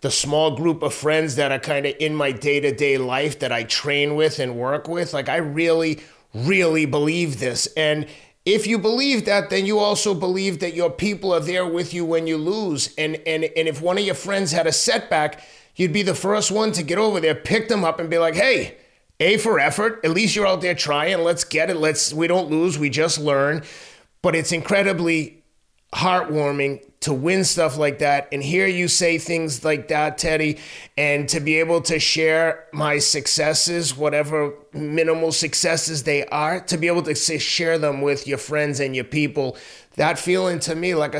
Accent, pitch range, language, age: American, 150-180 Hz, English, 30-49